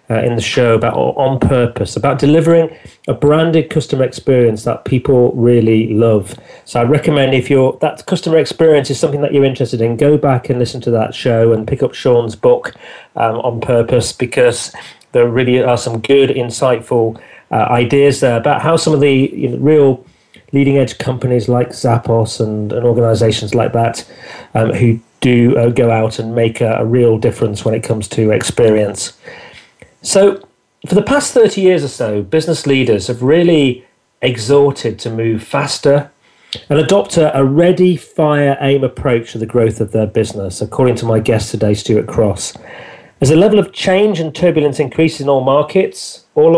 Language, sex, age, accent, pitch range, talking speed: English, male, 40-59, British, 115-150 Hz, 180 wpm